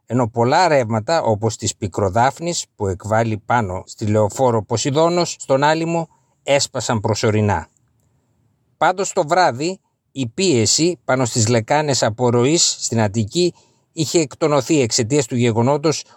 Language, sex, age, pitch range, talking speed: Greek, male, 50-69, 115-145 Hz, 120 wpm